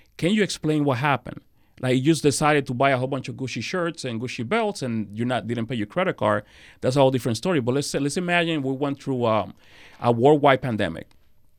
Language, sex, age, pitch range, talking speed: English, male, 30-49, 115-140 Hz, 235 wpm